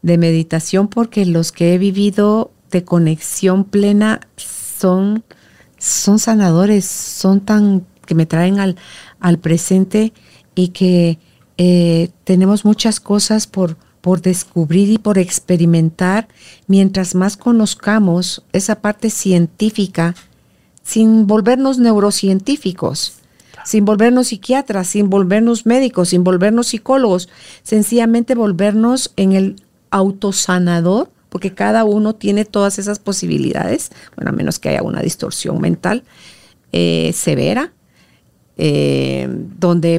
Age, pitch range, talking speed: 50-69, 180-215 Hz, 115 wpm